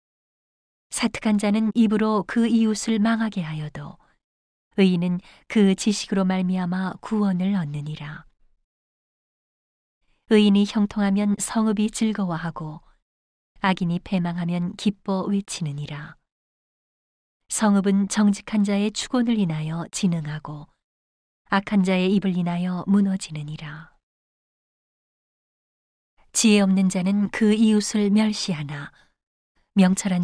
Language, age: Korean, 30-49